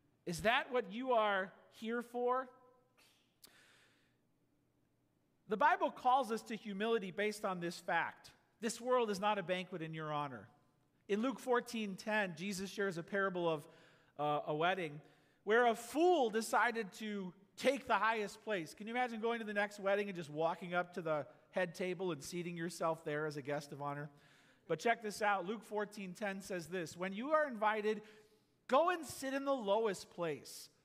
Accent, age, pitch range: American, 40-59, 170-235 Hz